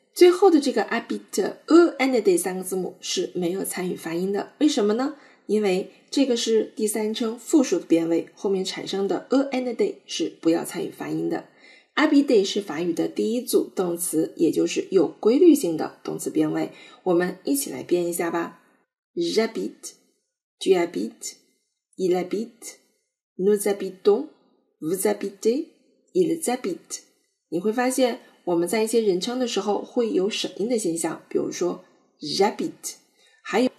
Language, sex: Chinese, female